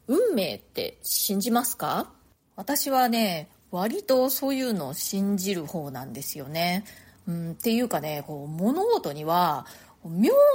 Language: Japanese